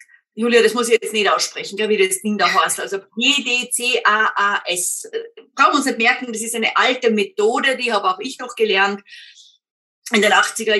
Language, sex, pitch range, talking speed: German, female, 220-320 Hz, 210 wpm